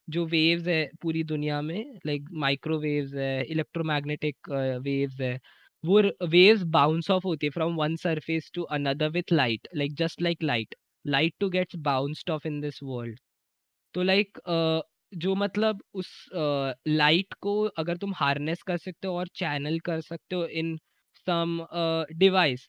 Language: Hindi